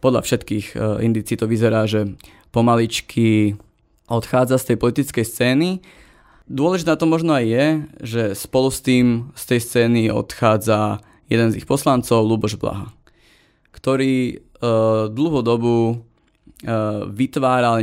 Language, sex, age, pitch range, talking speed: Slovak, male, 20-39, 110-125 Hz, 120 wpm